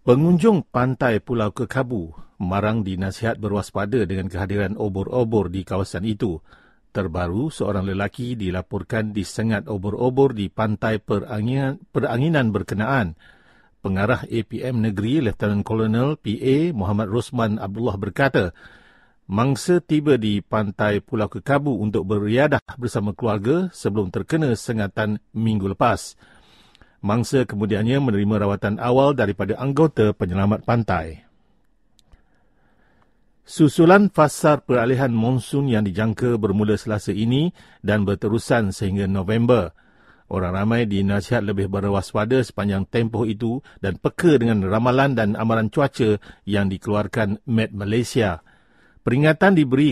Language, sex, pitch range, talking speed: English, male, 100-125 Hz, 110 wpm